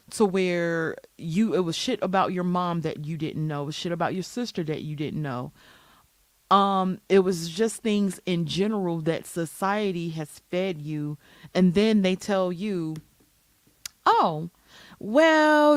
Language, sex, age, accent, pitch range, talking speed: English, female, 30-49, American, 160-195 Hz, 150 wpm